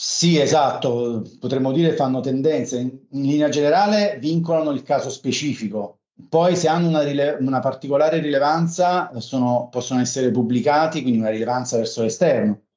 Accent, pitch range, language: native, 120-150 Hz, Italian